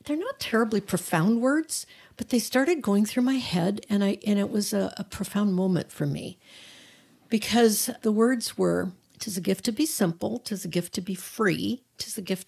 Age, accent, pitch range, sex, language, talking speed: 50-69, American, 190-240 Hz, female, English, 210 wpm